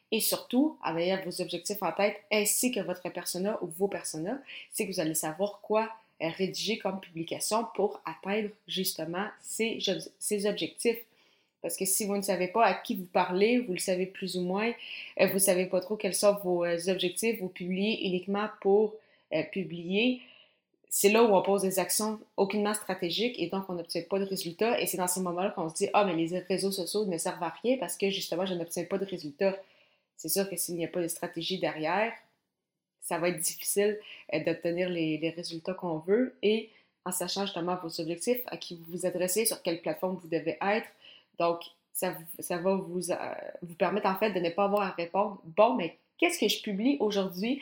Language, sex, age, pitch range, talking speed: French, female, 20-39, 175-205 Hz, 205 wpm